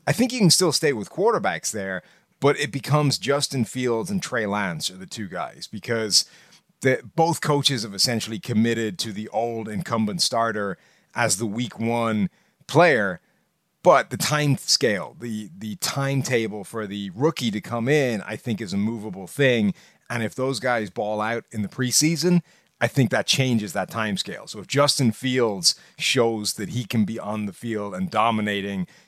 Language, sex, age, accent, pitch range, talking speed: English, male, 30-49, American, 110-150 Hz, 180 wpm